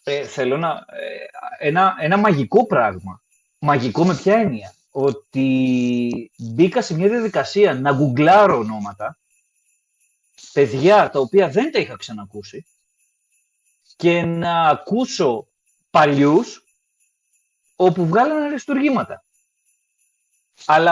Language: Greek